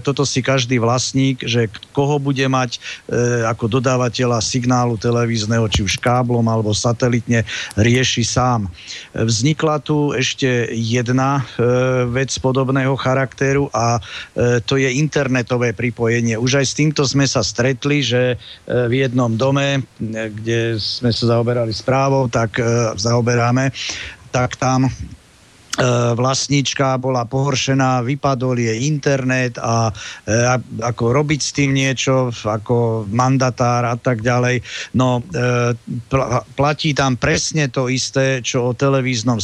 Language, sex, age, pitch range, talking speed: Slovak, male, 50-69, 120-135 Hz, 130 wpm